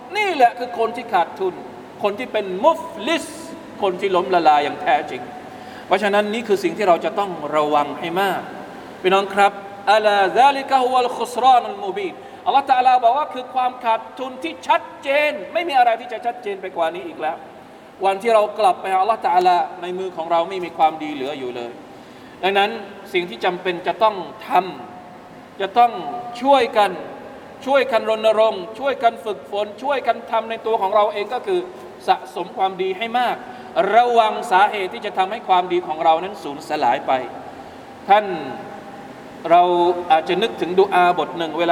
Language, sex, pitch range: Thai, male, 185-255 Hz